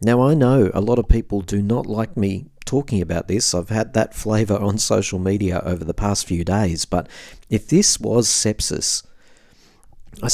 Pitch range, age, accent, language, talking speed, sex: 95-115 Hz, 40-59, Australian, English, 185 wpm, male